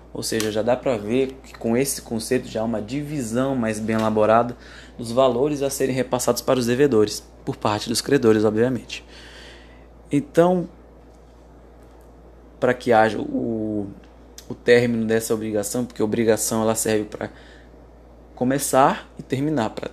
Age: 20-39